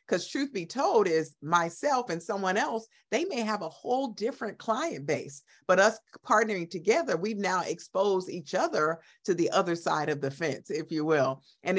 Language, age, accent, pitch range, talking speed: English, 50-69, American, 150-220 Hz, 190 wpm